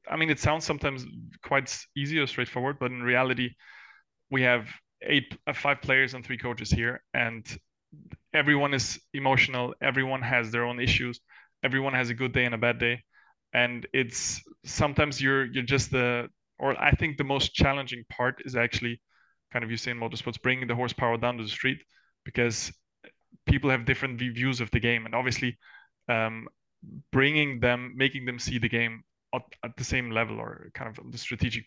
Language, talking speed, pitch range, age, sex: English, 180 wpm, 115-135 Hz, 20-39, male